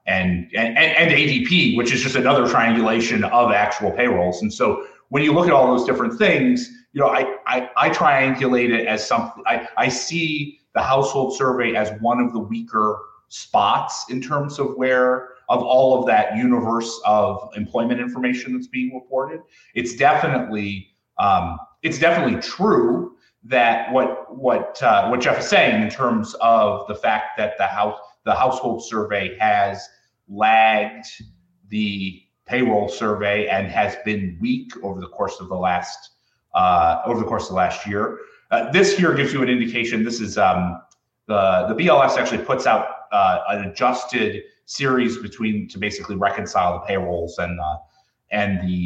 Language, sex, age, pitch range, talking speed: English, male, 30-49, 105-130 Hz, 165 wpm